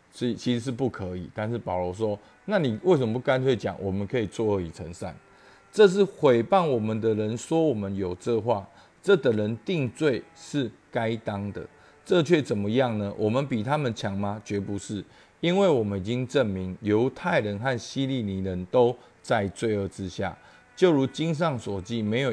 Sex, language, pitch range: male, Chinese, 100-135 Hz